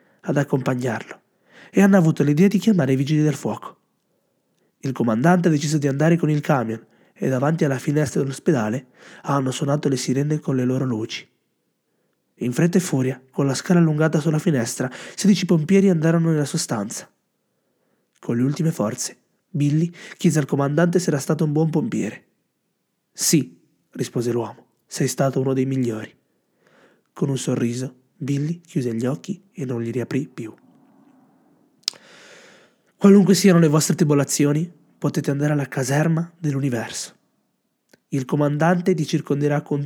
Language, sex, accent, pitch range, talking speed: Italian, male, native, 130-165 Hz, 150 wpm